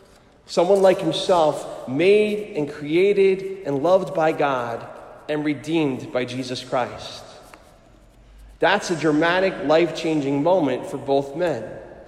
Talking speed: 115 wpm